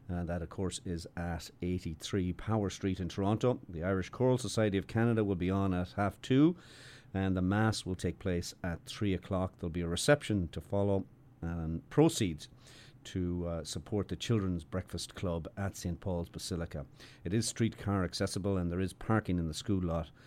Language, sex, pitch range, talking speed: English, male, 85-110 Hz, 190 wpm